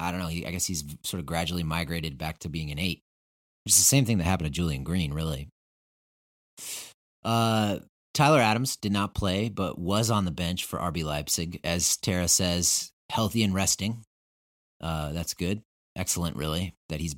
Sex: male